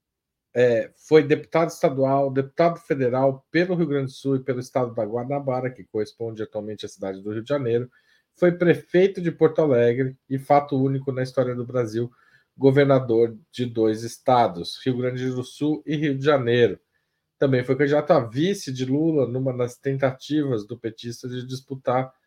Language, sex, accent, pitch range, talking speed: Portuguese, male, Brazilian, 125-145 Hz, 165 wpm